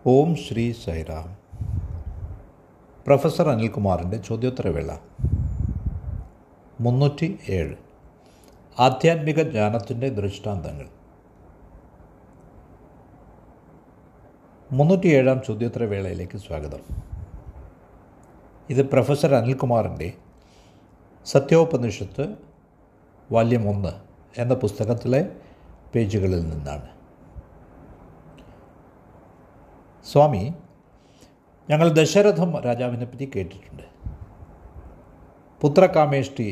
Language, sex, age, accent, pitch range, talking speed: Malayalam, male, 60-79, native, 95-135 Hz, 50 wpm